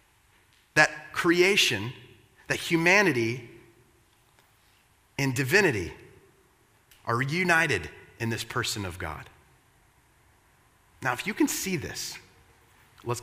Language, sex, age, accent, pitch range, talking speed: English, male, 30-49, American, 120-185 Hz, 90 wpm